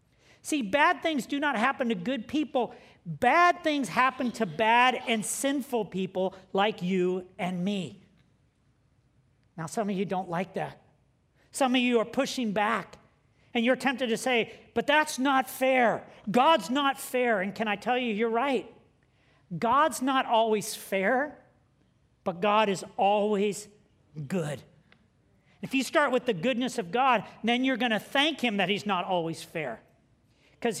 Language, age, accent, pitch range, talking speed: English, 40-59, American, 195-260 Hz, 160 wpm